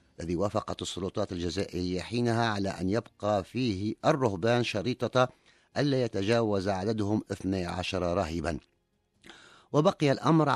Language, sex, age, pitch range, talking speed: Arabic, male, 50-69, 90-120 Hz, 100 wpm